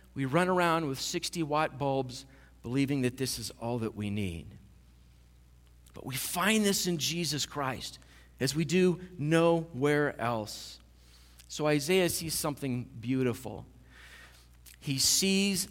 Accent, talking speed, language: American, 130 wpm, English